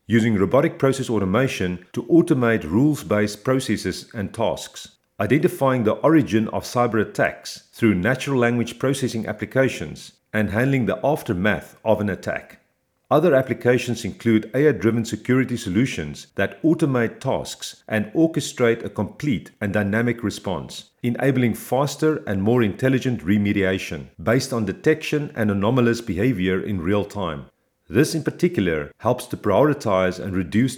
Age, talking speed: 40-59, 130 wpm